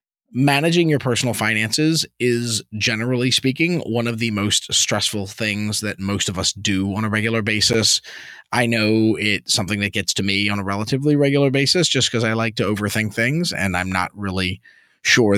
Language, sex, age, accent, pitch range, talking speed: English, male, 30-49, American, 100-120 Hz, 185 wpm